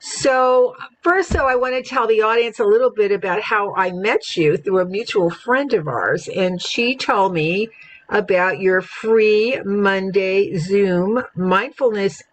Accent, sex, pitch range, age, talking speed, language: American, female, 170-240 Hz, 50-69, 160 wpm, English